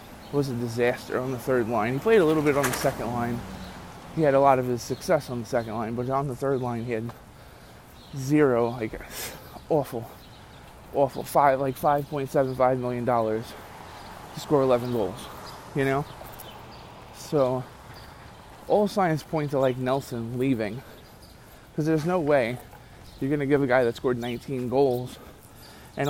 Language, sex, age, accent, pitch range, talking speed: English, male, 20-39, American, 120-145 Hz, 165 wpm